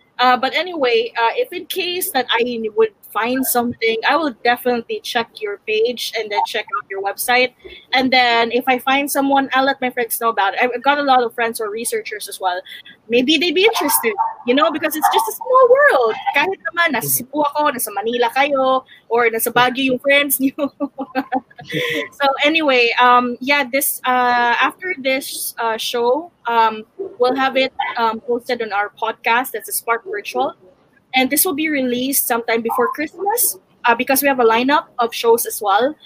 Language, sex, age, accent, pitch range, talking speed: English, female, 20-39, Filipino, 235-325 Hz, 185 wpm